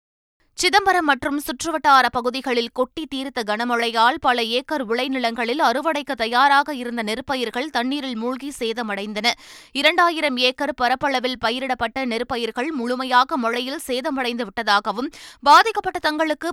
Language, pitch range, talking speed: Tamil, 235-285 Hz, 100 wpm